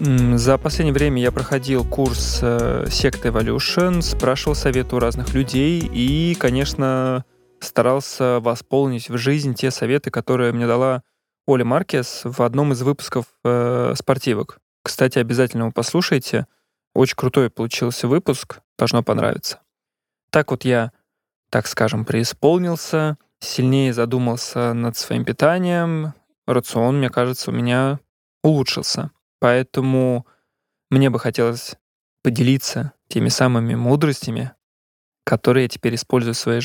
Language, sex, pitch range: Russian, male, 120-135 Hz